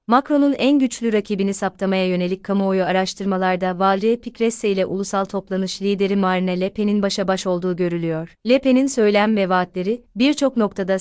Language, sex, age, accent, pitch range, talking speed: Turkish, female, 30-49, native, 185-220 Hz, 155 wpm